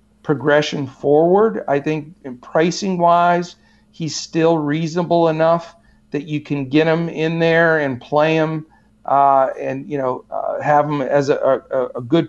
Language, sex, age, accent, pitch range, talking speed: English, male, 50-69, American, 140-165 Hz, 160 wpm